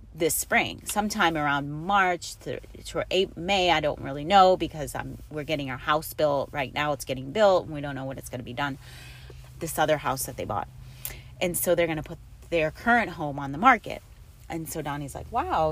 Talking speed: 220 wpm